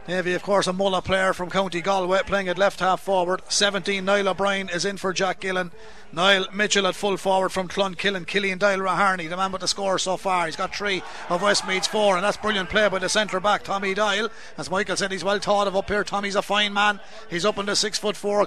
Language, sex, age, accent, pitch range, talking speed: English, male, 30-49, Irish, 195-230 Hz, 245 wpm